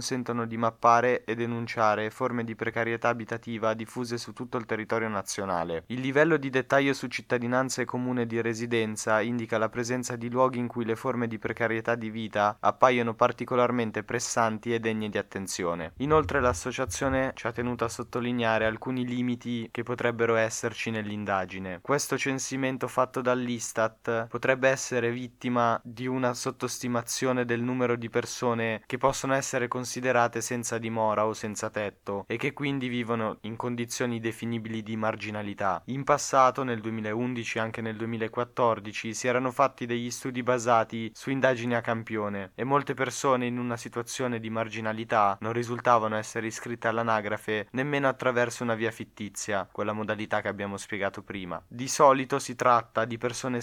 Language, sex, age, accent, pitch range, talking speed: Italian, male, 20-39, native, 110-125 Hz, 155 wpm